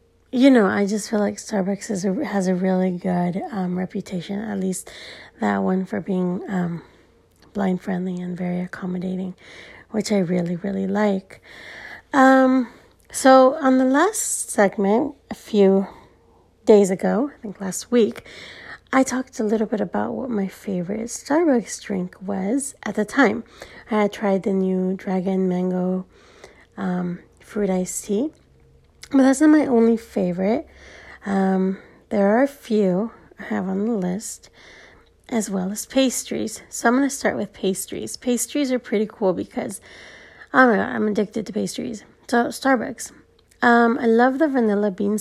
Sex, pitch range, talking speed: female, 185-235 Hz, 155 wpm